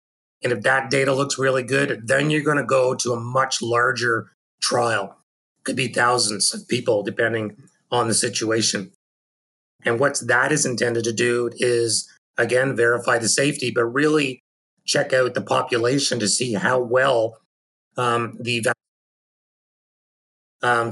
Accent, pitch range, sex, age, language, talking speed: American, 115-130 Hz, male, 30-49, English, 155 wpm